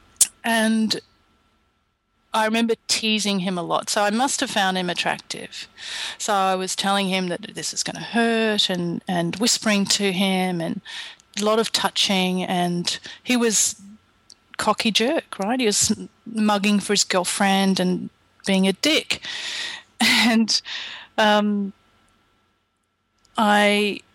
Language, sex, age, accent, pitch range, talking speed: English, female, 30-49, Australian, 185-220 Hz, 135 wpm